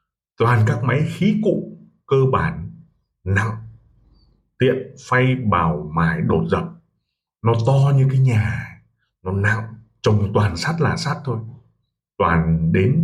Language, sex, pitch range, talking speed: Vietnamese, male, 100-135 Hz, 135 wpm